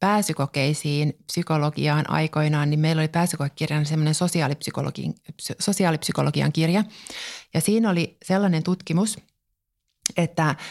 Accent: native